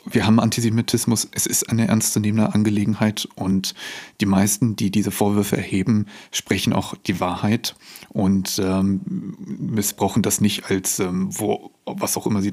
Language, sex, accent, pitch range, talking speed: German, male, German, 100-115 Hz, 150 wpm